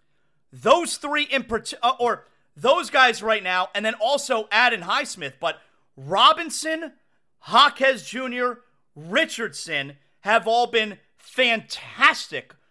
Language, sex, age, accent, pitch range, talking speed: English, male, 30-49, American, 185-275 Hz, 110 wpm